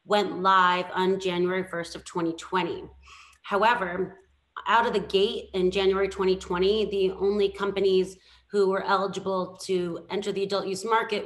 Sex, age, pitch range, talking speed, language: female, 30-49, 180-205 Hz, 145 wpm, English